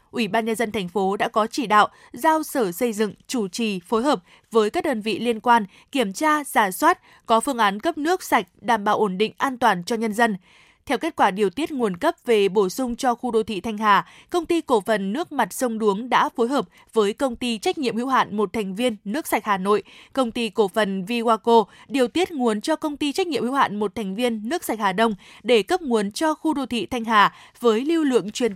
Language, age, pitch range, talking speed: Vietnamese, 20-39, 215-265 Hz, 250 wpm